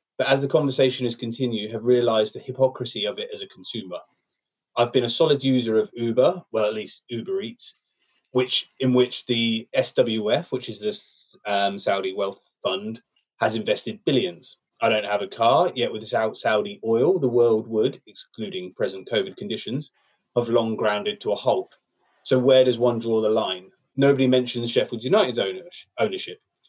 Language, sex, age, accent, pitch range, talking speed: English, male, 30-49, British, 115-140 Hz, 170 wpm